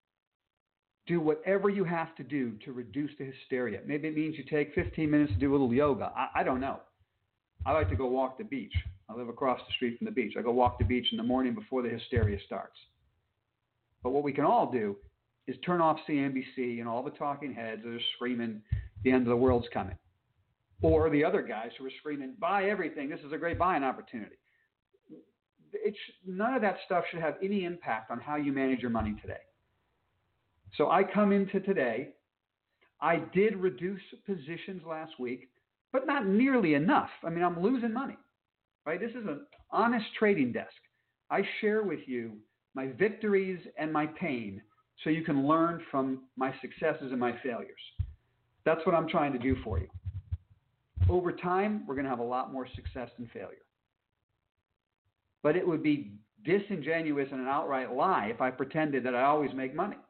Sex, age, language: male, 50-69, English